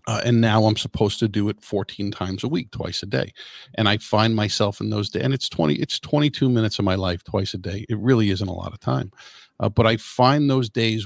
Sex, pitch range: male, 100-115 Hz